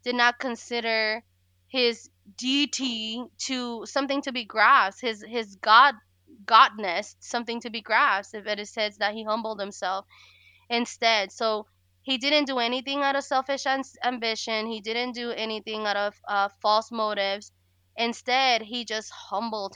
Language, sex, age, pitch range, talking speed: English, female, 20-39, 205-240 Hz, 150 wpm